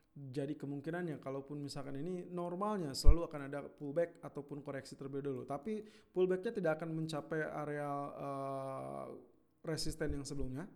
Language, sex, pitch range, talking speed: Indonesian, male, 140-170 Hz, 135 wpm